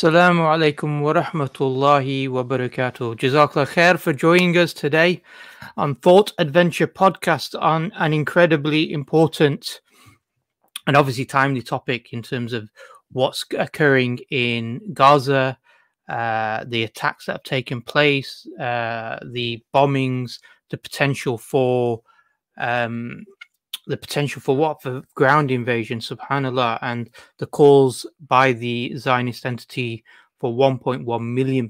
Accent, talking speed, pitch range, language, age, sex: British, 115 wpm, 120-155 Hz, English, 30-49, male